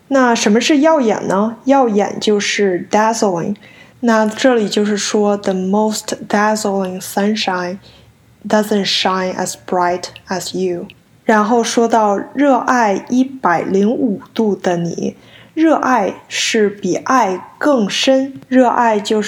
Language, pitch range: Chinese, 195-245 Hz